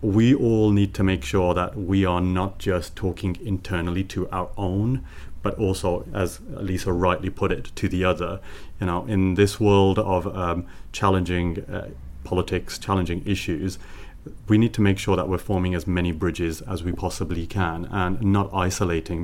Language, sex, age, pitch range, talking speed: English, male, 30-49, 85-100 Hz, 175 wpm